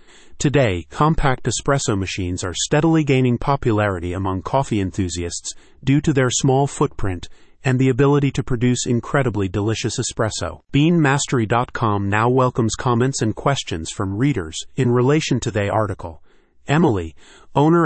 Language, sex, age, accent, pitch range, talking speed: English, male, 30-49, American, 105-135 Hz, 130 wpm